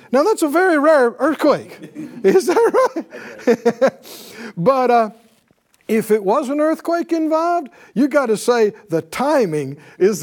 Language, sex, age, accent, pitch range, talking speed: English, male, 50-69, American, 165-245 Hz, 140 wpm